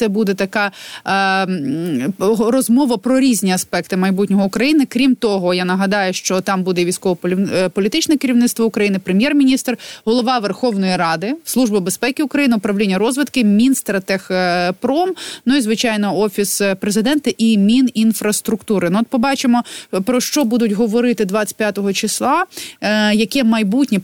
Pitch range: 195-250 Hz